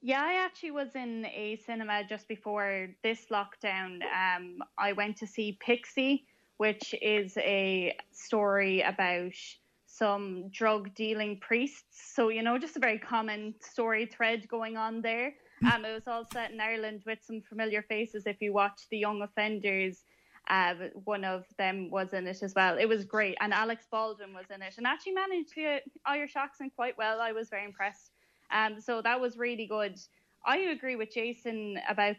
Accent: Irish